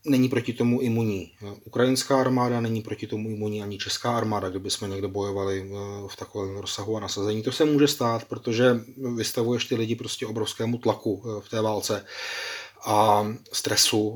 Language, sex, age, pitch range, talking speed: Czech, male, 30-49, 105-130 Hz, 160 wpm